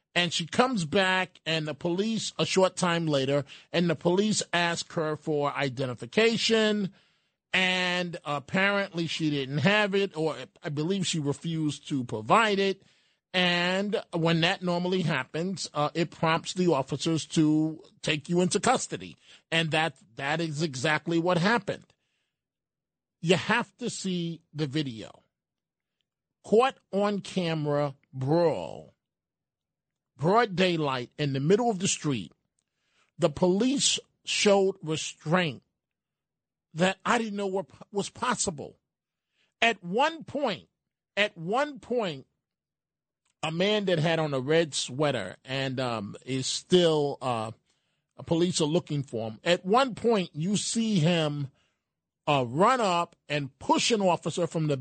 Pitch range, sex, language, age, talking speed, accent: 150-195 Hz, male, English, 40-59, 135 wpm, American